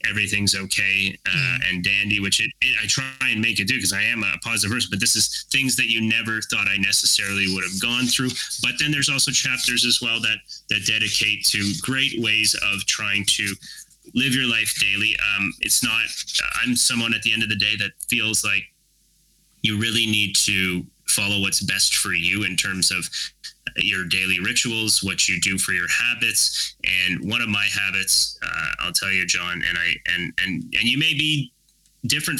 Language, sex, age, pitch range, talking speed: English, male, 30-49, 100-120 Hz, 200 wpm